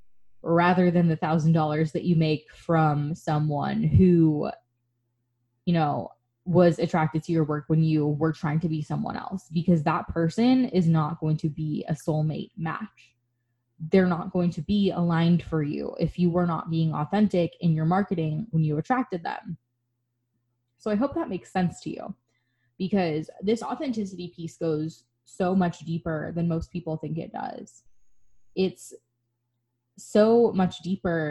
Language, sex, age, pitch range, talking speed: English, female, 20-39, 145-180 Hz, 160 wpm